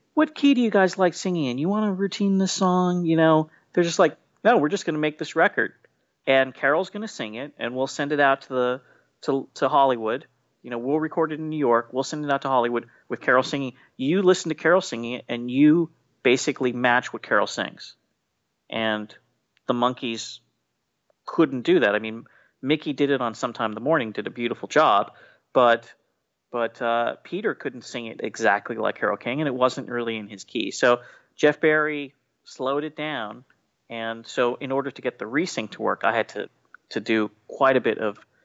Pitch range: 120-160 Hz